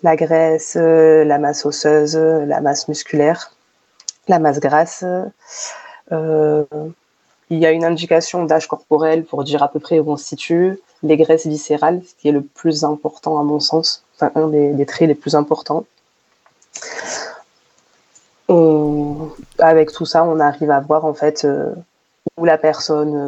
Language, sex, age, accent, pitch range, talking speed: French, female, 20-39, French, 145-165 Hz, 155 wpm